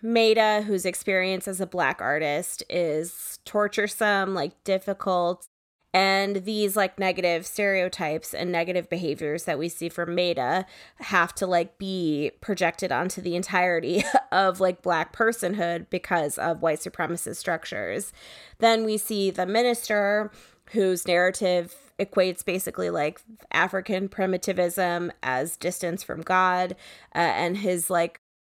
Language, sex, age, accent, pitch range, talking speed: English, female, 20-39, American, 170-200 Hz, 130 wpm